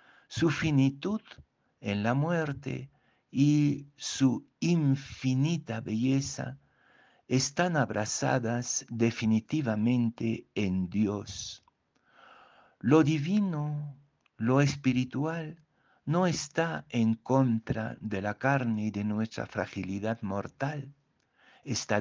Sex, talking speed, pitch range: male, 85 wpm, 105-140 Hz